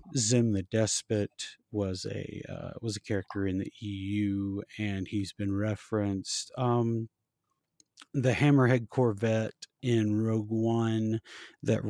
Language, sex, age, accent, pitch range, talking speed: English, male, 30-49, American, 105-120 Hz, 120 wpm